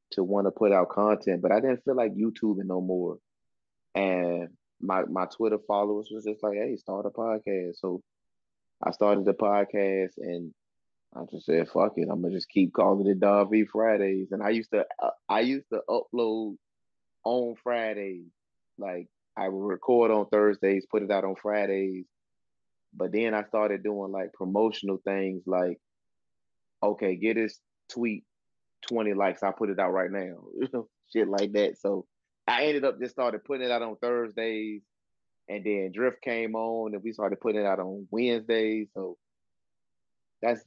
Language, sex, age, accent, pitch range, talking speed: English, male, 20-39, American, 95-110 Hz, 175 wpm